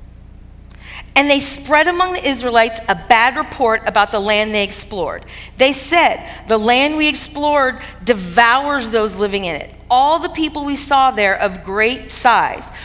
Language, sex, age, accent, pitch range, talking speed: English, female, 40-59, American, 205-285 Hz, 160 wpm